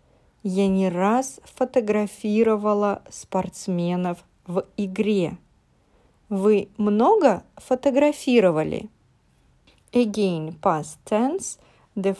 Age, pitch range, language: 40-59, 190-240 Hz, English